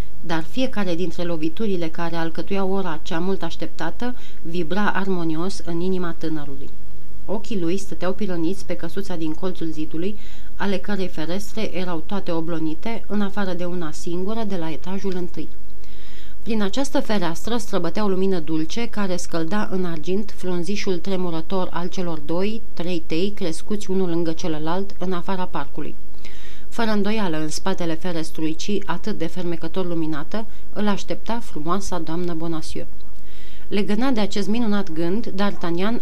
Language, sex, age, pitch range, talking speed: Romanian, female, 30-49, 165-200 Hz, 140 wpm